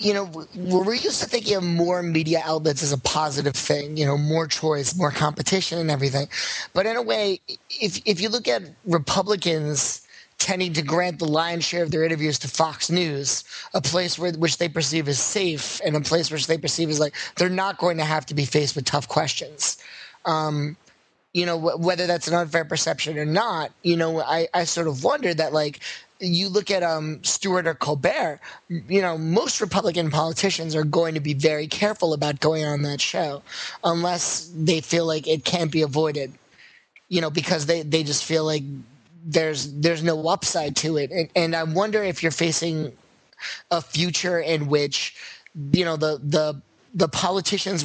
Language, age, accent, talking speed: English, 30-49, American, 190 wpm